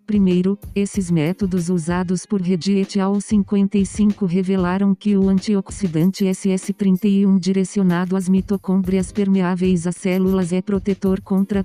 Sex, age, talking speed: female, 40-59, 110 wpm